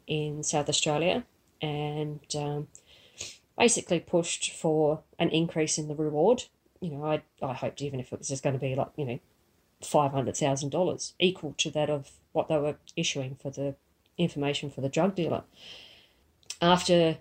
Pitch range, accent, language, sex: 145-160 Hz, Australian, English, female